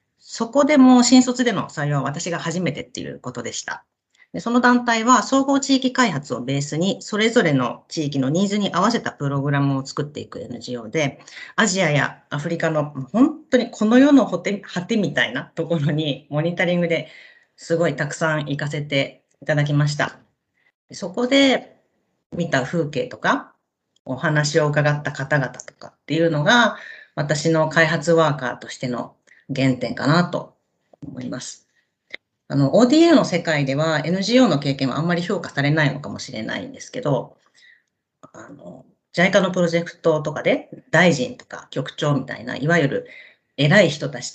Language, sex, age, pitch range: Japanese, female, 40-59, 145-205 Hz